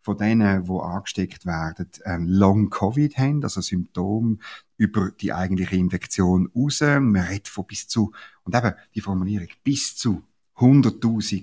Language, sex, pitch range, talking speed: German, male, 100-140 Hz, 135 wpm